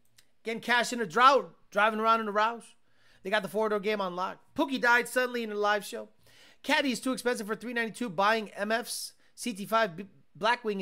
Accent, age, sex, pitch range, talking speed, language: American, 30-49, male, 185-235 Hz, 195 wpm, English